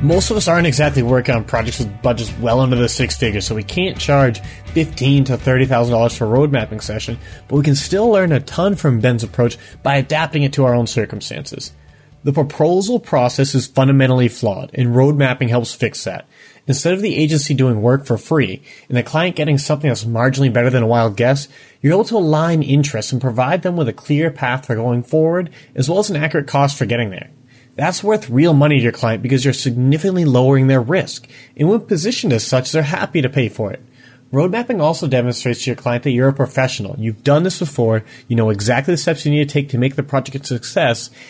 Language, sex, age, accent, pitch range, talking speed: English, male, 30-49, American, 120-150 Hz, 220 wpm